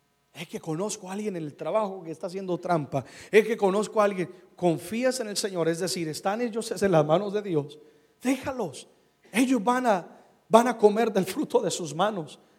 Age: 40-59